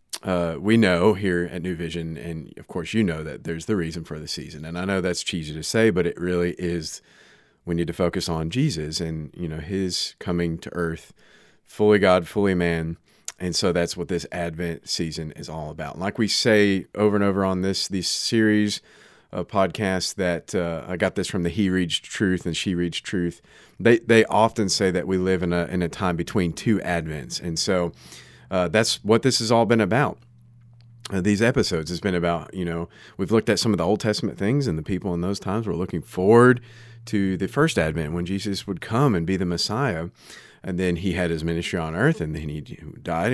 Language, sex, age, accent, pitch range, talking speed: English, male, 30-49, American, 85-105 Hz, 220 wpm